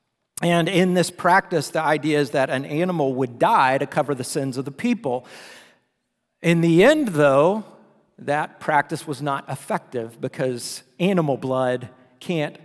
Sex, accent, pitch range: male, American, 145-195 Hz